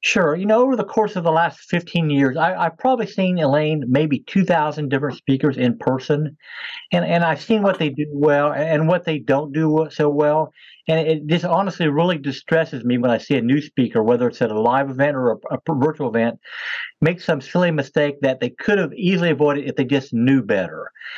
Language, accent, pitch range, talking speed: English, American, 140-170 Hz, 215 wpm